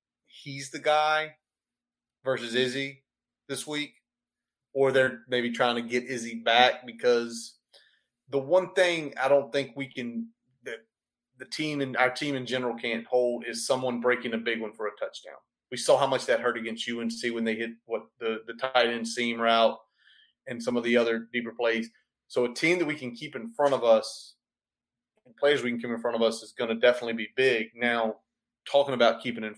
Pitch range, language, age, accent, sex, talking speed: 115-135 Hz, English, 30-49, American, male, 200 wpm